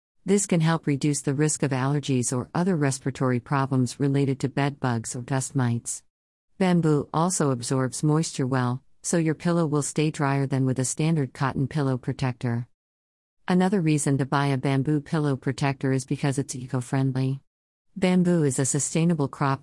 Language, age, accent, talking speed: English, 50-69, American, 165 wpm